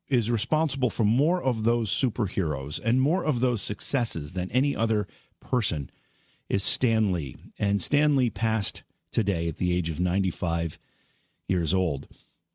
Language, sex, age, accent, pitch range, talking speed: English, male, 50-69, American, 100-130 Hz, 140 wpm